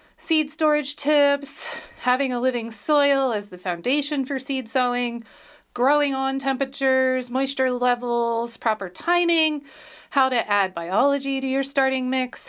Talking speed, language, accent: 135 wpm, English, American